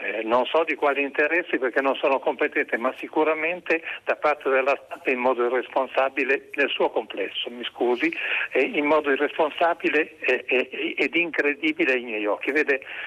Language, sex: Italian, male